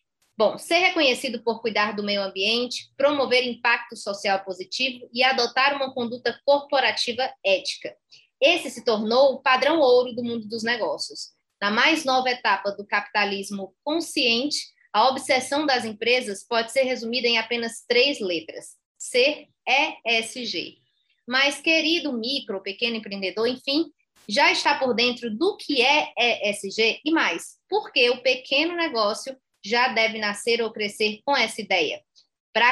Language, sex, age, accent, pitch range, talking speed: Portuguese, female, 20-39, Brazilian, 220-275 Hz, 140 wpm